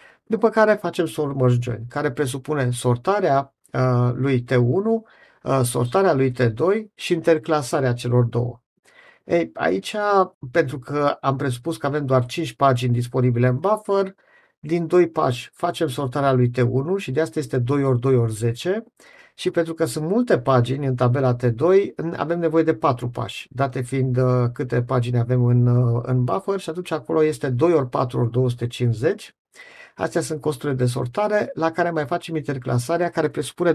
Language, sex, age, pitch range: Romanian, male, 50-69, 125-165 Hz